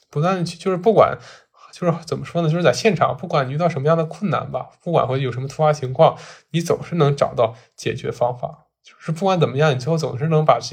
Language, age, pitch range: Chinese, 10-29, 130-155 Hz